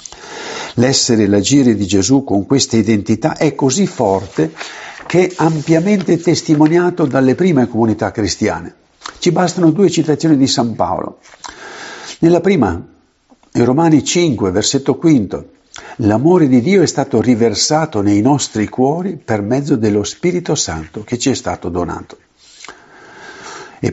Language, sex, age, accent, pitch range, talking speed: Italian, male, 50-69, native, 120-175 Hz, 135 wpm